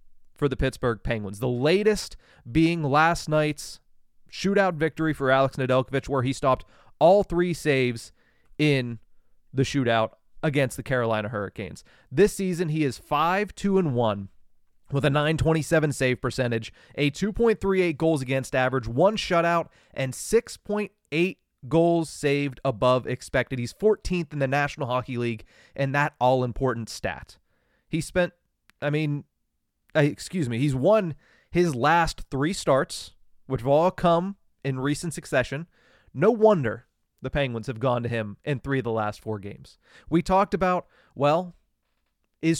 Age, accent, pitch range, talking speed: 30-49, American, 130-170 Hz, 140 wpm